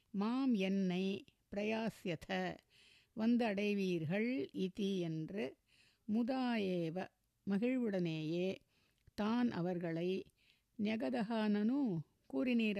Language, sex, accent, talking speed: Tamil, female, native, 55 wpm